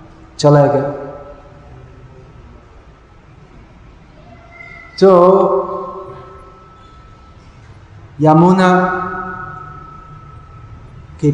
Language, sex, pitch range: Hindi, male, 130-165 Hz